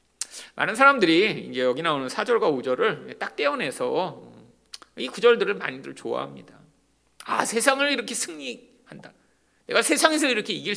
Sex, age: male, 40-59